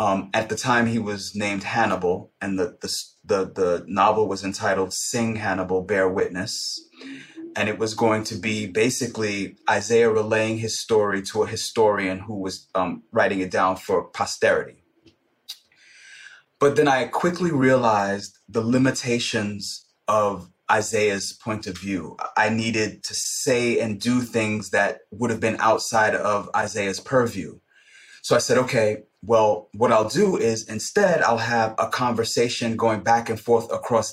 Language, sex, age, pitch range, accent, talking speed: English, male, 30-49, 105-120 Hz, American, 155 wpm